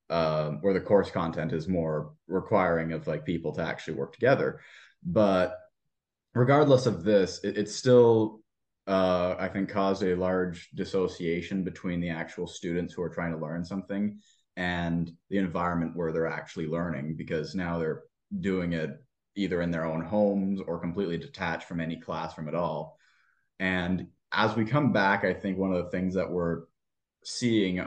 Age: 20-39